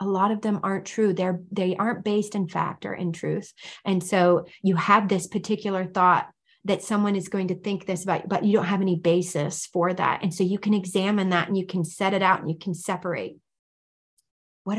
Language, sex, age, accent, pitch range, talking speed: English, female, 30-49, American, 170-195 Hz, 225 wpm